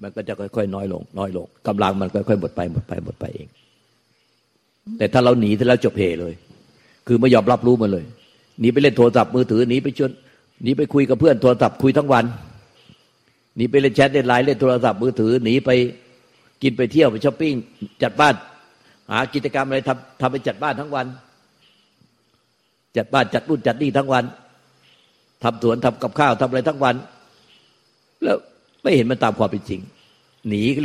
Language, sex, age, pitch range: Thai, male, 60-79, 110-135 Hz